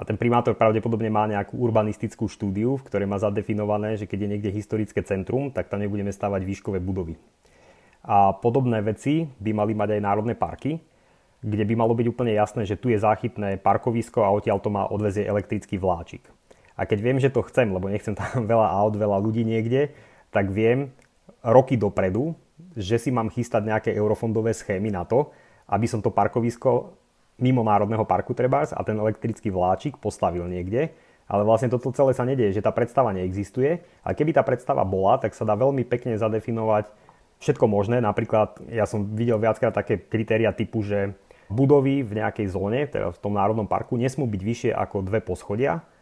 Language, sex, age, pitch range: Slovak, male, 30-49, 100-120 Hz